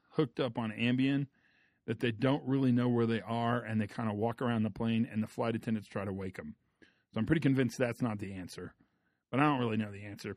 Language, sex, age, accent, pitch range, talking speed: English, male, 40-59, American, 110-135 Hz, 250 wpm